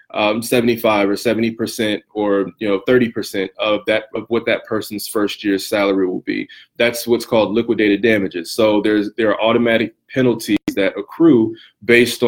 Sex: male